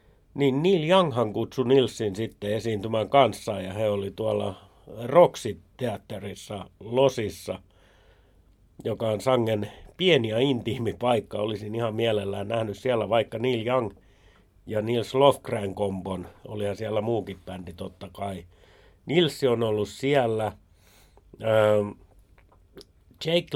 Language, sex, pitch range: Finnish, male, 100-130 Hz